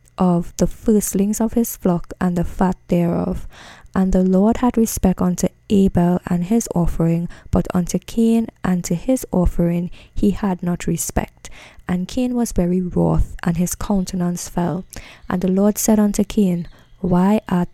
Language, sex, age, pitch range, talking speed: English, female, 10-29, 170-200 Hz, 160 wpm